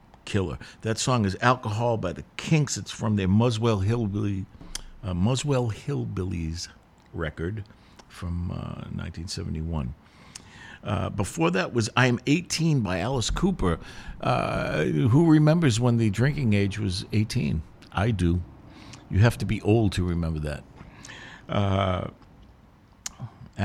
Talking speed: 125 wpm